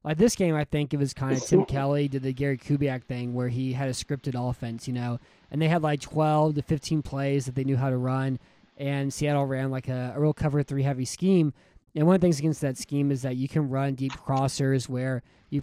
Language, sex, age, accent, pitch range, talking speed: English, male, 20-39, American, 130-150 Hz, 255 wpm